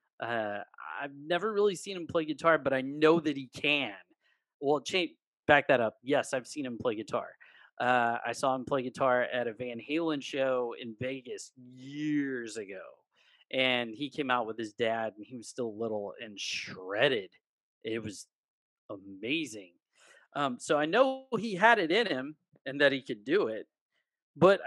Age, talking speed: 30-49, 180 wpm